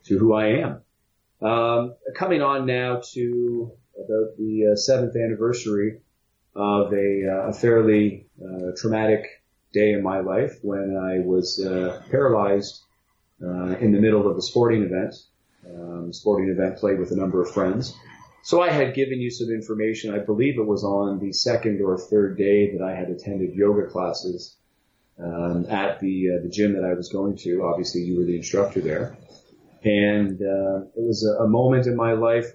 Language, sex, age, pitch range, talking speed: English, male, 30-49, 95-110 Hz, 180 wpm